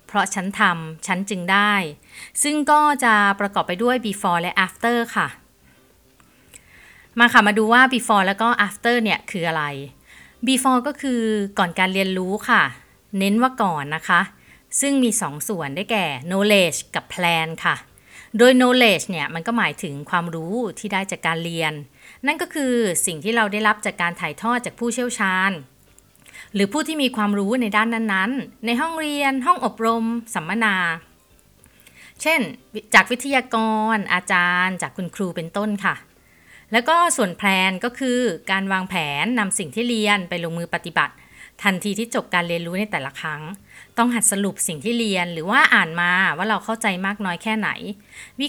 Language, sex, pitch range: Thai, female, 175-230 Hz